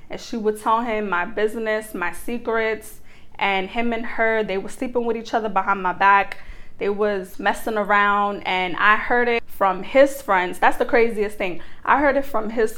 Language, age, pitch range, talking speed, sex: English, 20-39, 205-240 Hz, 195 wpm, female